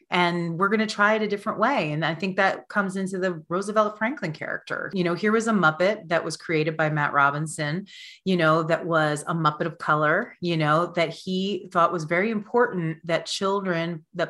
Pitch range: 160-205 Hz